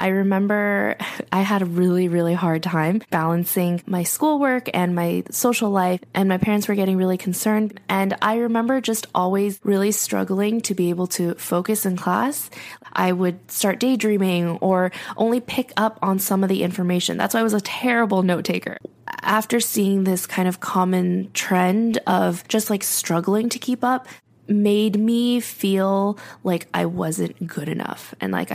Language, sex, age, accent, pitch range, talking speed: English, female, 10-29, American, 175-210 Hz, 170 wpm